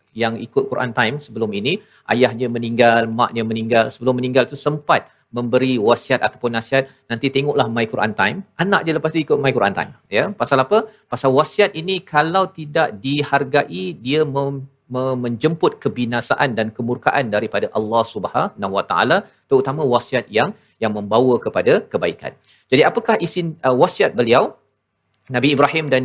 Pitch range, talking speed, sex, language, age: 120-155 Hz, 160 wpm, male, Malayalam, 40-59